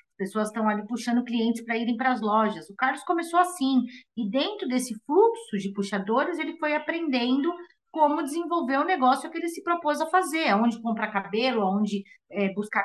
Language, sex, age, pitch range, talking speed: Portuguese, female, 30-49, 215-310 Hz, 175 wpm